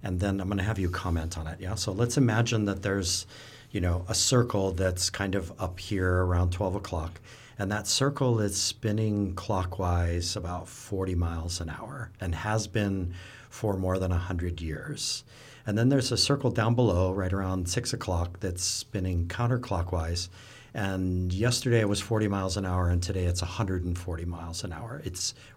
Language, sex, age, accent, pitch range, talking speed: English, male, 50-69, American, 90-115 Hz, 180 wpm